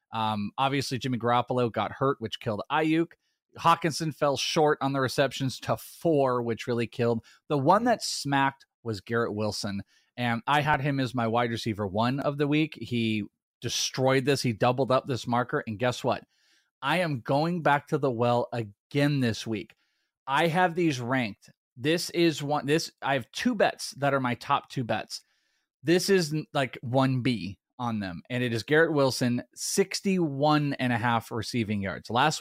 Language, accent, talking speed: English, American, 180 wpm